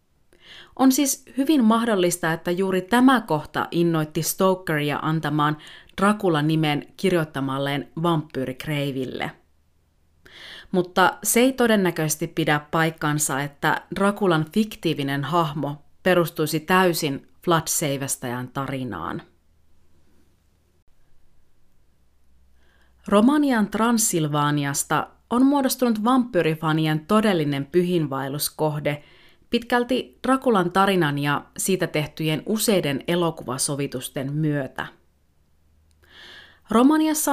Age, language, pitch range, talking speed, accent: 30-49, Finnish, 145-200 Hz, 70 wpm, native